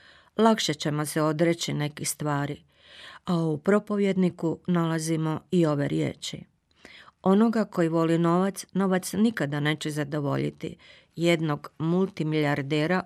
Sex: female